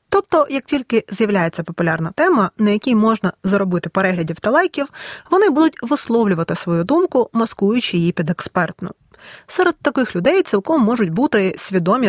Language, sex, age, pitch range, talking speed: Ukrainian, female, 20-39, 180-265 Hz, 145 wpm